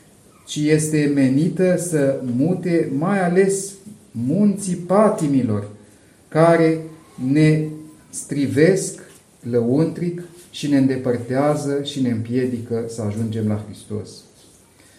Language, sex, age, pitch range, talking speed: Romanian, male, 40-59, 130-170 Hz, 90 wpm